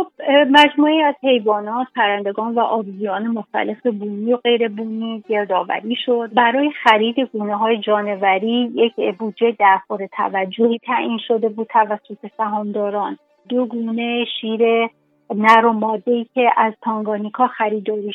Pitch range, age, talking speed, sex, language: 210-245 Hz, 30-49, 115 wpm, female, Persian